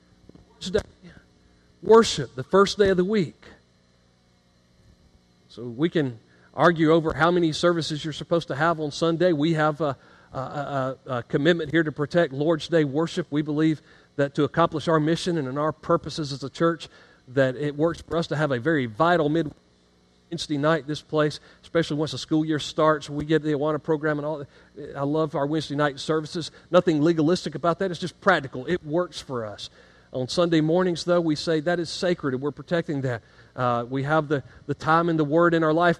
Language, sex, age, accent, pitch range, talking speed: English, male, 40-59, American, 145-180 Hz, 195 wpm